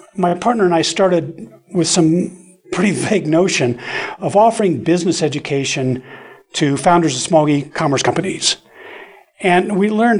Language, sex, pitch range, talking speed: English, male, 145-185 Hz, 135 wpm